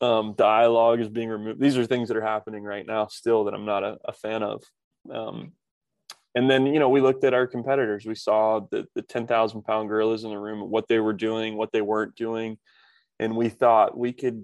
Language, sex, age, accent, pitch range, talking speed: English, male, 20-39, American, 105-120 Hz, 225 wpm